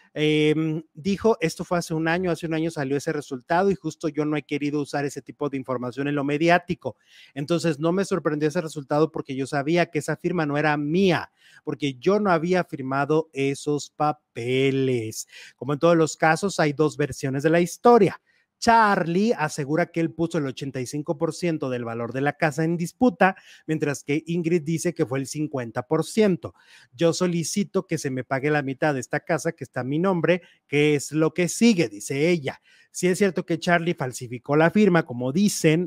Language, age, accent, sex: English, 30-49, Mexican, male